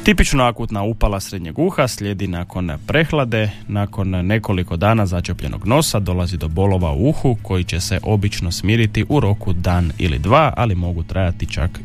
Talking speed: 160 wpm